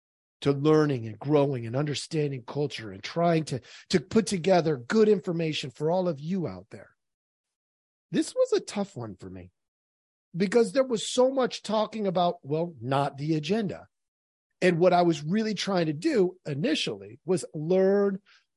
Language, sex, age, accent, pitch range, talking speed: English, male, 40-59, American, 115-175 Hz, 160 wpm